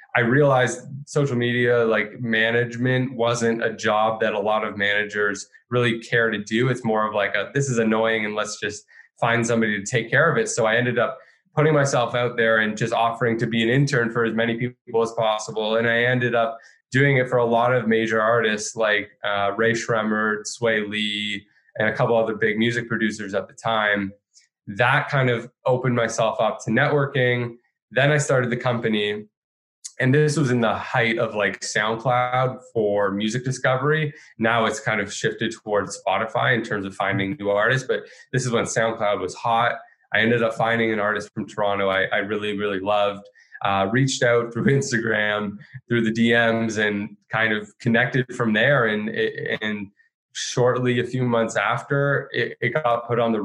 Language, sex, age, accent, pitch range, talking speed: English, male, 20-39, American, 105-125 Hz, 190 wpm